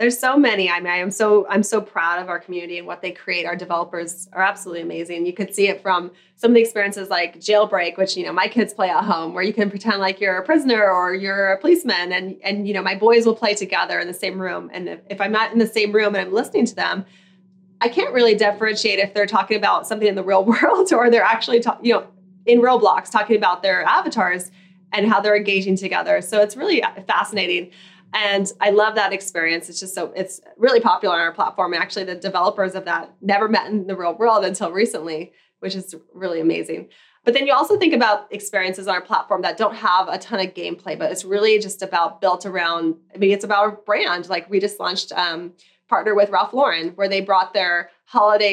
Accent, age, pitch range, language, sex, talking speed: American, 20-39, 185-215 Hz, English, female, 235 wpm